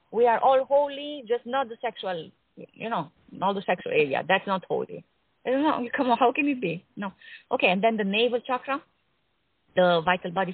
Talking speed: 205 wpm